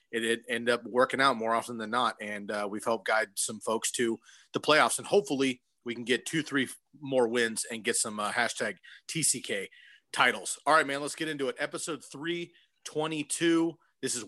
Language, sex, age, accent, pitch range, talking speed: English, male, 30-49, American, 125-150 Hz, 195 wpm